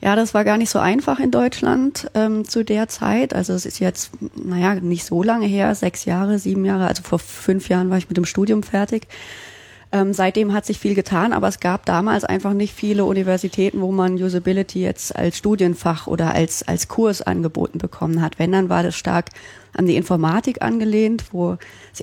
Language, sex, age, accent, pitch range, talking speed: German, female, 30-49, German, 170-200 Hz, 200 wpm